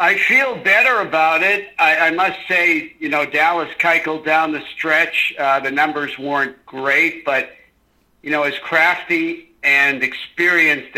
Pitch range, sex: 140-185 Hz, male